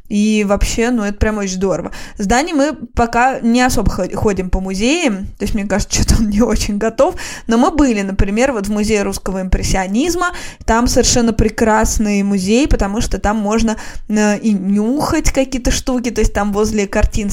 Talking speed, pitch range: 175 wpm, 205-240 Hz